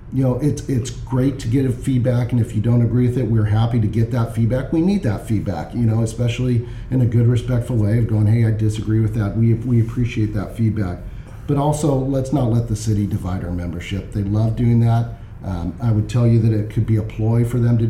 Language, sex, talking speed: English, male, 250 wpm